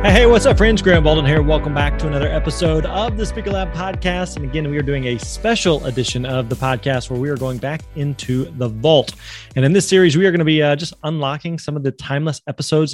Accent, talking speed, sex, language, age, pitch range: American, 245 wpm, male, English, 30-49, 135-170 Hz